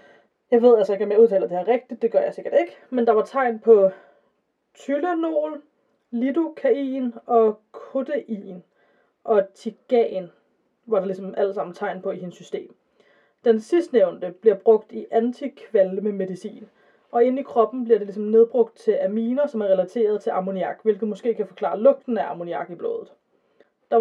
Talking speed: 165 wpm